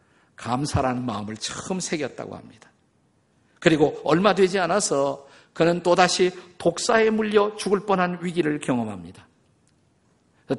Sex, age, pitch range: male, 50-69, 130-195 Hz